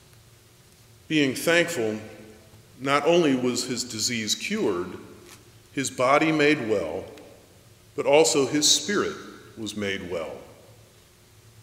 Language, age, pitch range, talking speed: English, 40-59, 115-140 Hz, 100 wpm